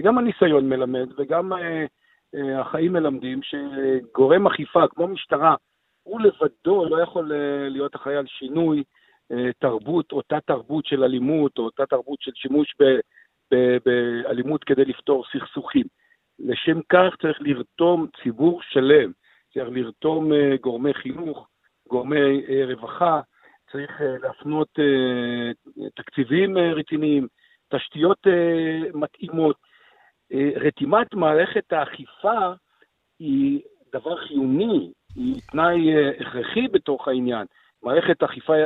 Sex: male